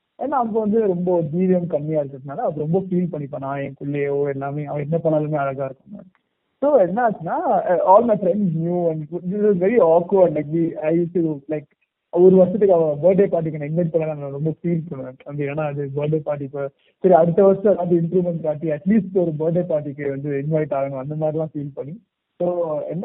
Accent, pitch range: native, 150-195 Hz